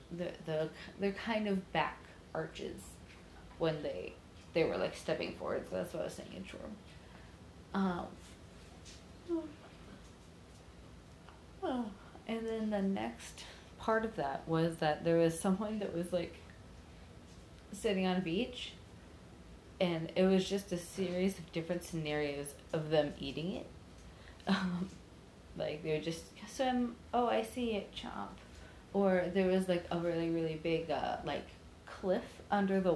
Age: 30-49